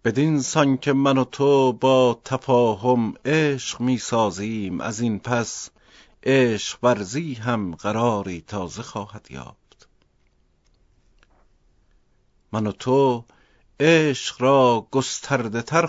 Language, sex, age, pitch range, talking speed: Persian, male, 50-69, 105-130 Hz, 100 wpm